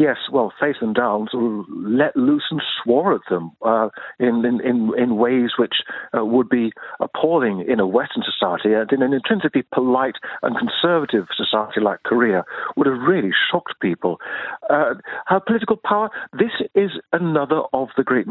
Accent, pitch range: British, 120-180 Hz